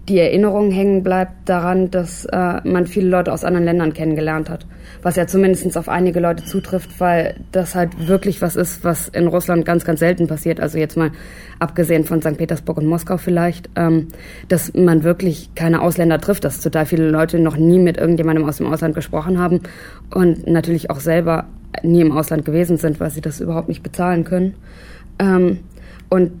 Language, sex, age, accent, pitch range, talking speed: German, female, 20-39, German, 165-180 Hz, 190 wpm